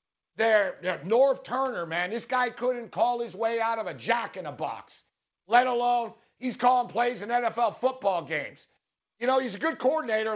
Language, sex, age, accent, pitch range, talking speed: English, male, 50-69, American, 180-250 Hz, 170 wpm